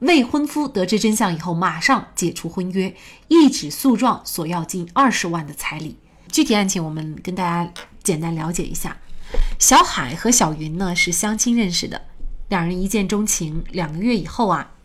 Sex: female